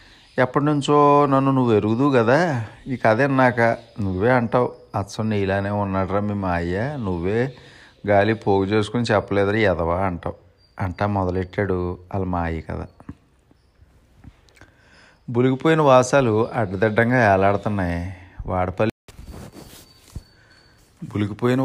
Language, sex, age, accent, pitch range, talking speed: Telugu, male, 30-49, native, 95-115 Hz, 95 wpm